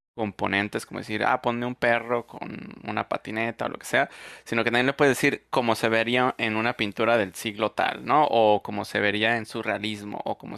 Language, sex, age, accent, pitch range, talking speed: Spanish, male, 20-39, Mexican, 105-125 Hz, 215 wpm